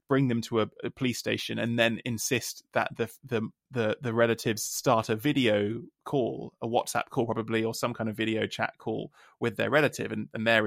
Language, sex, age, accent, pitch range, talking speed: English, male, 20-39, British, 110-120 Hz, 210 wpm